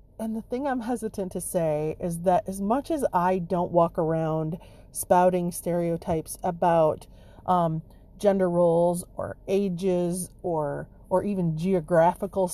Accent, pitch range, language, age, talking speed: American, 170-220 Hz, English, 30-49, 135 wpm